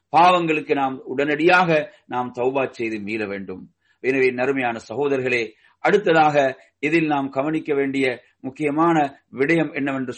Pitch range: 130-190 Hz